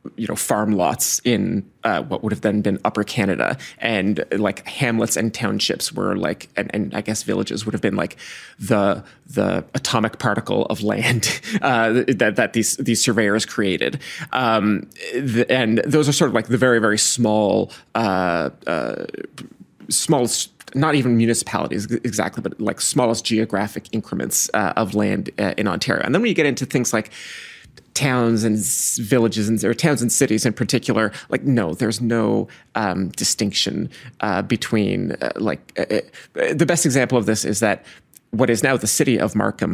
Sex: male